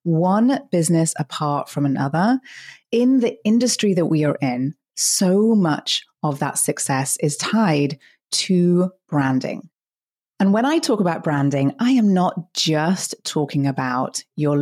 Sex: female